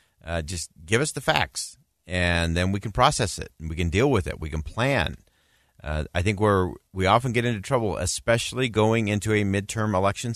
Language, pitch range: English, 90-115 Hz